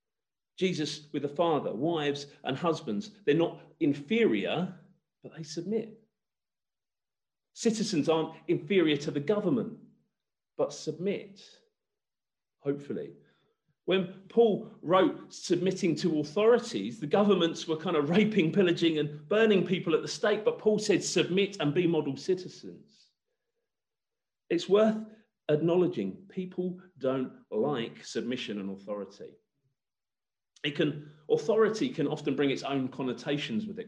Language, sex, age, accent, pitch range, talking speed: English, male, 40-59, British, 145-205 Hz, 120 wpm